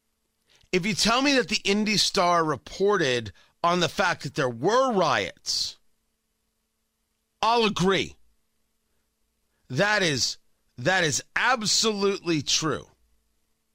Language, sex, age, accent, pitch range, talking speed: English, male, 40-59, American, 150-220 Hz, 105 wpm